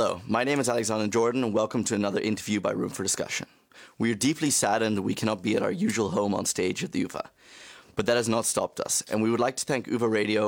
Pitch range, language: 105-125 Hz, English